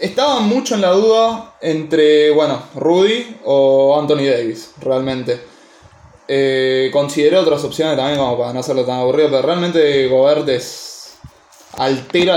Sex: male